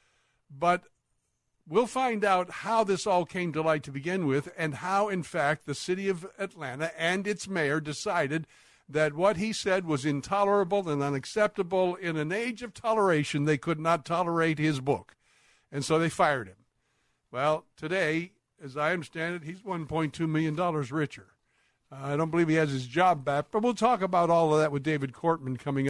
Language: English